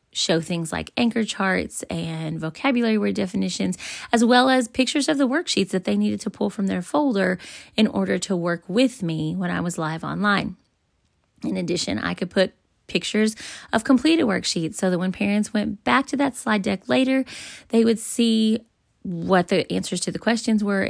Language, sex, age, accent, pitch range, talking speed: English, female, 20-39, American, 185-240 Hz, 185 wpm